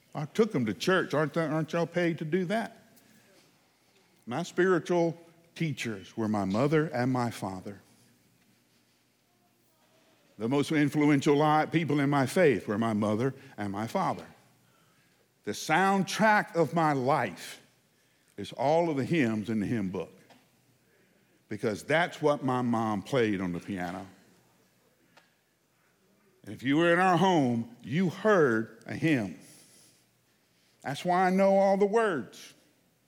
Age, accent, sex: 50-69, American, male